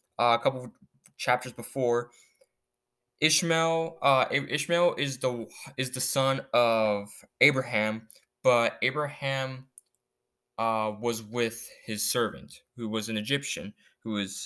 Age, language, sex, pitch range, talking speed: 20-39, English, male, 110-135 Hz, 120 wpm